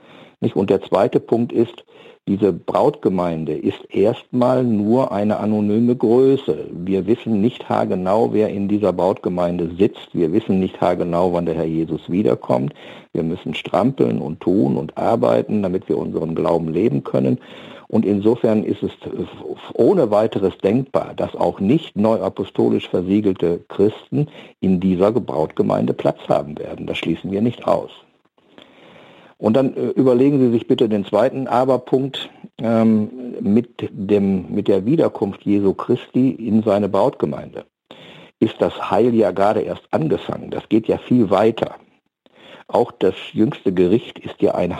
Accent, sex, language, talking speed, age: German, male, German, 145 wpm, 50-69